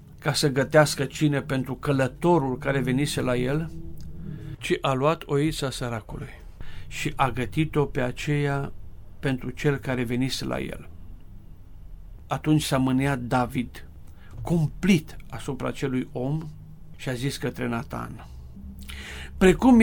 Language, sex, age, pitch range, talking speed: Romanian, male, 50-69, 100-150 Hz, 120 wpm